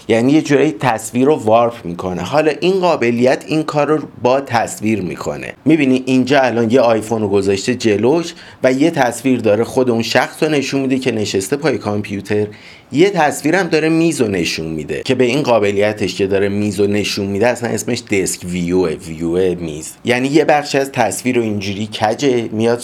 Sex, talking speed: male, 185 wpm